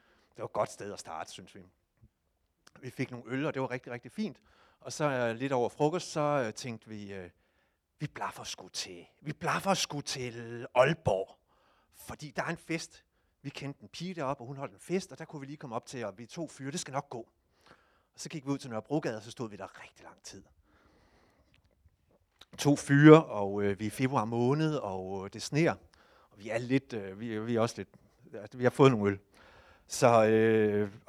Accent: native